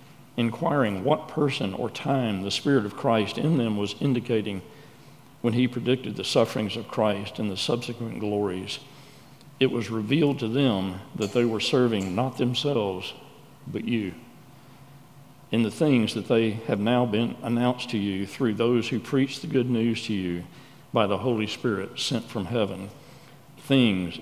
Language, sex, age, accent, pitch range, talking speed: English, male, 50-69, American, 110-135 Hz, 160 wpm